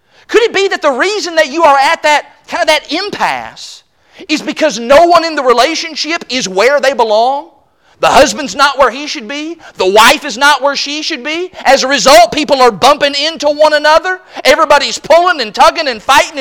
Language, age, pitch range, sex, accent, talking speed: English, 40-59, 270-345 Hz, male, American, 205 wpm